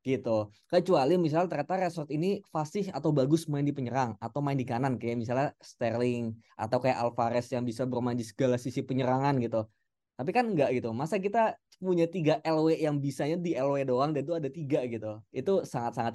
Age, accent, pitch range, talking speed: 20-39, native, 120-155 Hz, 195 wpm